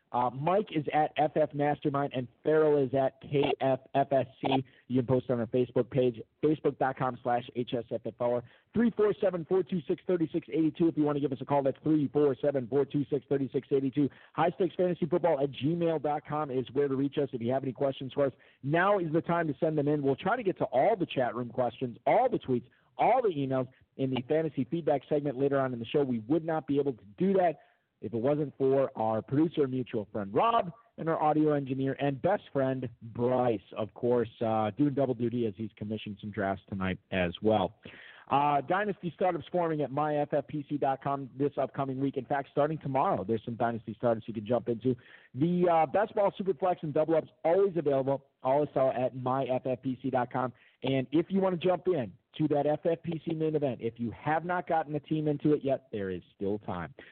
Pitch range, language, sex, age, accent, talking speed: 125-155 Hz, English, male, 40-59, American, 190 wpm